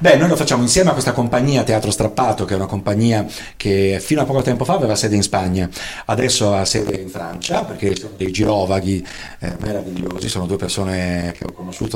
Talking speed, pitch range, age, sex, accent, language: 205 wpm, 100-130 Hz, 40-59, male, native, Italian